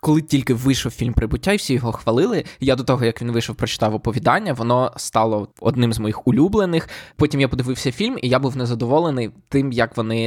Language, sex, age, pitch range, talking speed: Ukrainian, male, 20-39, 125-160 Hz, 200 wpm